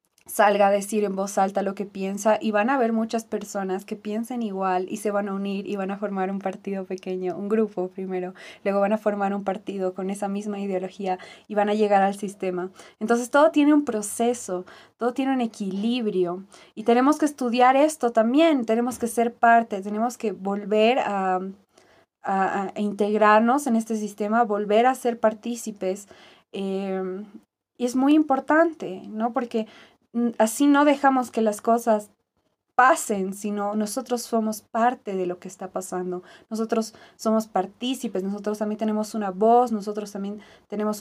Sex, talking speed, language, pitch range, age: female, 170 wpm, Spanish, 200-240 Hz, 20-39